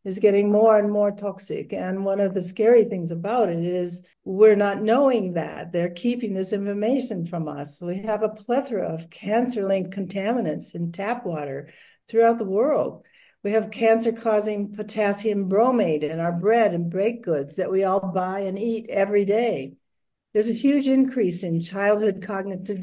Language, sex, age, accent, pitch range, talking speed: English, female, 60-79, American, 170-215 Hz, 170 wpm